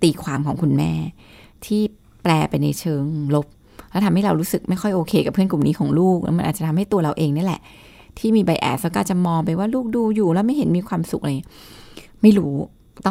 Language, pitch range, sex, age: Thai, 155-205 Hz, female, 20-39